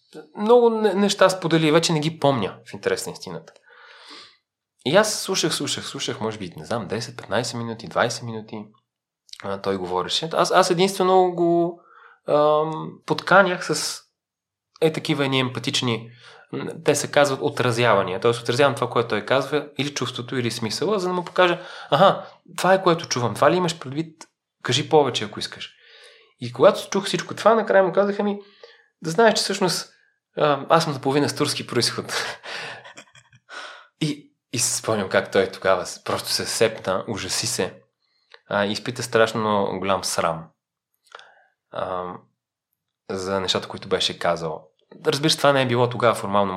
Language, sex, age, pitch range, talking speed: Bulgarian, male, 30-49, 115-165 Hz, 145 wpm